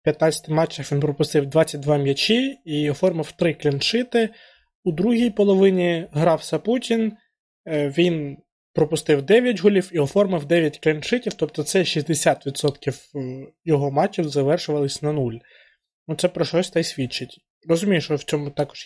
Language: Ukrainian